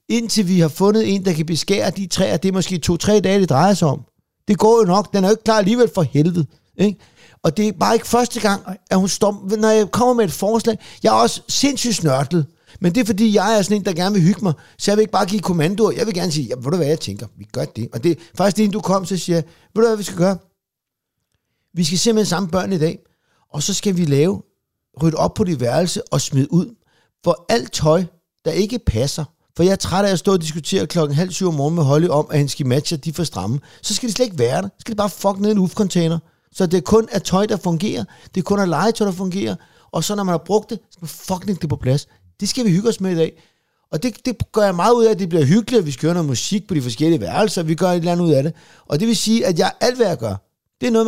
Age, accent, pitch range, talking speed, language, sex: 60-79, Danish, 160-210 Hz, 290 wpm, English, male